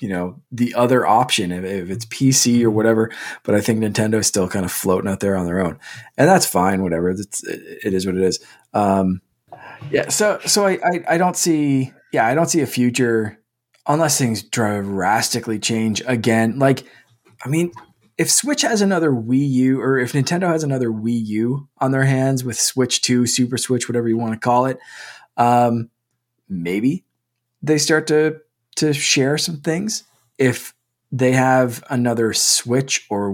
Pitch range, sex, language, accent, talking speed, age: 110-135 Hz, male, English, American, 175 wpm, 20-39